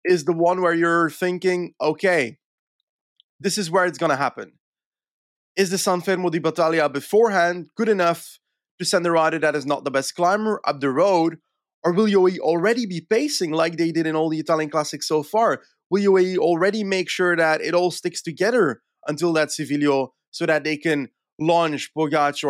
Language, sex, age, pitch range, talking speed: English, male, 20-39, 150-195 Hz, 190 wpm